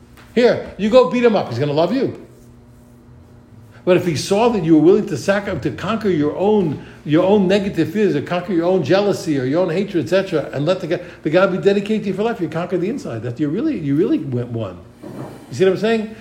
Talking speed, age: 235 wpm, 60-79